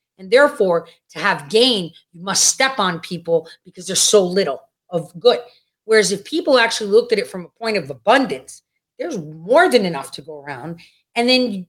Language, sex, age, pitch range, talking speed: English, female, 30-49, 200-295 Hz, 190 wpm